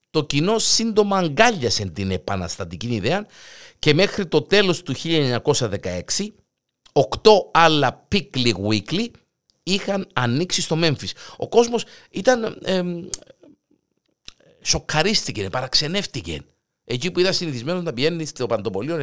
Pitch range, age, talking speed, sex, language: 120-190 Hz, 50-69, 110 wpm, male, Greek